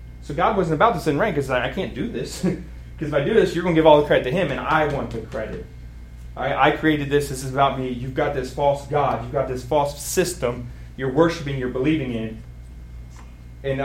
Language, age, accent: English, 30-49, American